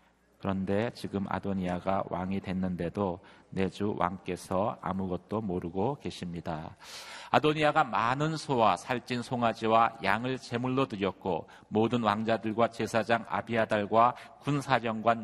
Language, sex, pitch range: Korean, male, 95-120 Hz